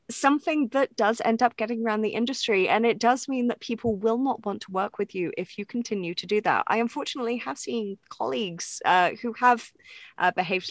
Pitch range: 200-260 Hz